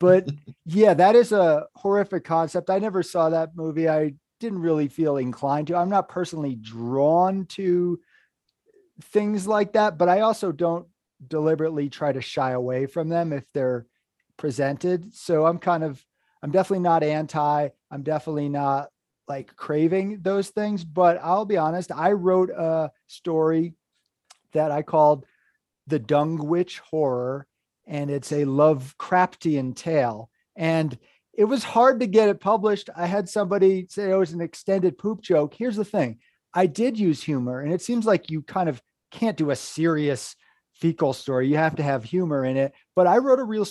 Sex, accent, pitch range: male, American, 145-190 Hz